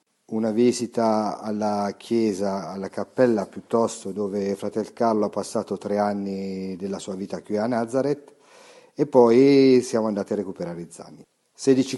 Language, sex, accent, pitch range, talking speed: Italian, male, native, 105-125 Hz, 145 wpm